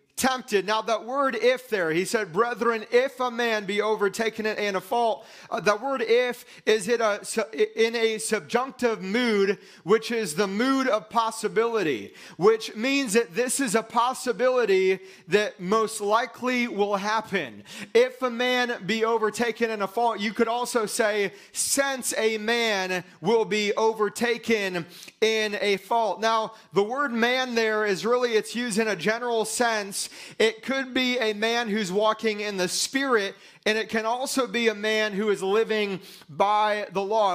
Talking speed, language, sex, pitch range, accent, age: 165 wpm, English, male, 205-235 Hz, American, 30-49